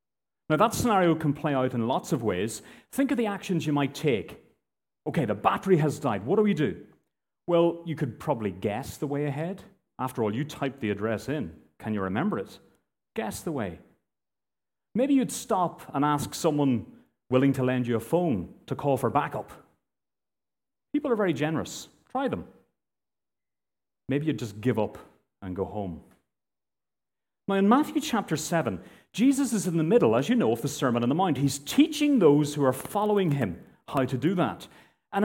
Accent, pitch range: British, 125-205 Hz